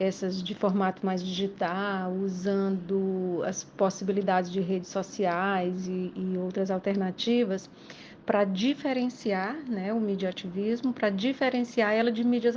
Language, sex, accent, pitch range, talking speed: Portuguese, female, Brazilian, 195-225 Hz, 125 wpm